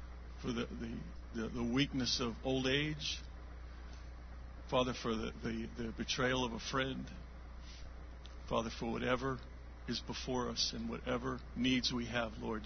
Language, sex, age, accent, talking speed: English, male, 50-69, American, 140 wpm